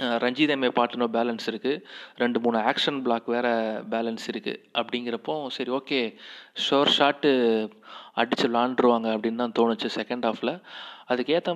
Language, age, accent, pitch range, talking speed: Tamil, 30-49, native, 120-140 Hz, 125 wpm